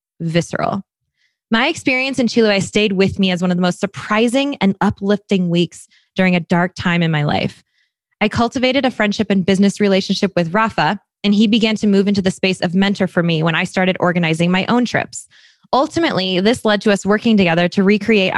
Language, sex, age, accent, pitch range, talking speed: English, female, 20-39, American, 175-220 Hz, 200 wpm